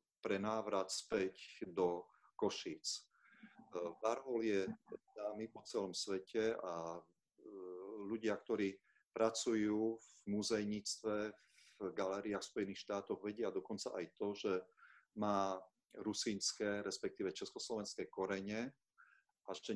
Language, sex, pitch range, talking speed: Slovak, male, 95-110 Hz, 100 wpm